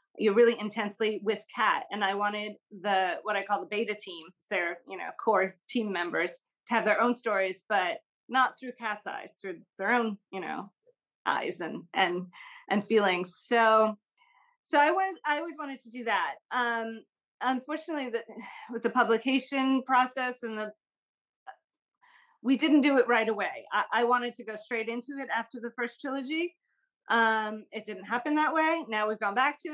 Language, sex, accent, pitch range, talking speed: English, female, American, 210-265 Hz, 180 wpm